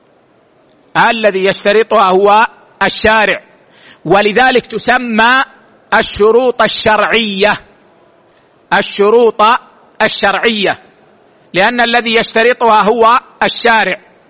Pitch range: 215-245 Hz